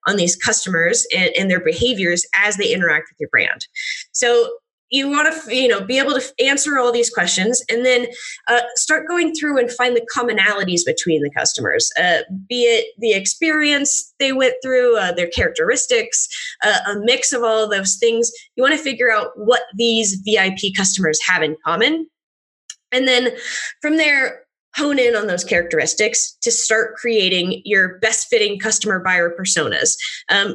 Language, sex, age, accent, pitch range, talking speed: English, female, 20-39, American, 210-270 Hz, 170 wpm